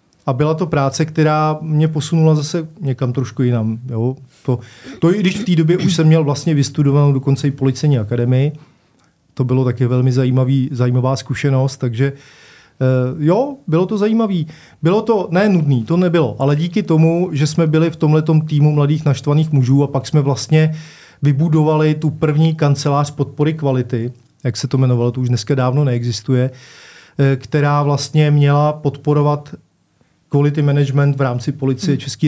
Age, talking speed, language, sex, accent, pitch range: 30-49, 160 wpm, Czech, male, native, 130-155 Hz